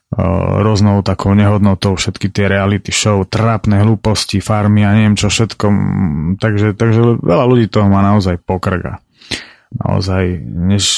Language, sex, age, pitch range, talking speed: Slovak, male, 30-49, 100-120 Hz, 130 wpm